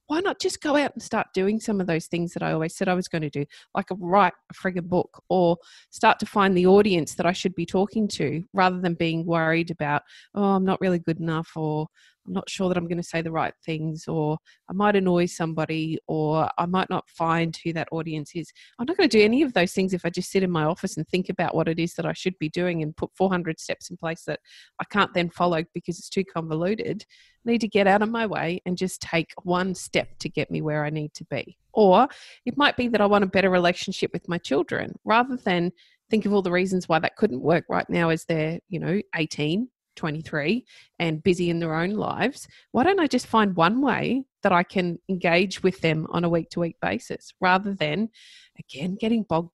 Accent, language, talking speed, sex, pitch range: Australian, English, 240 wpm, female, 165-205 Hz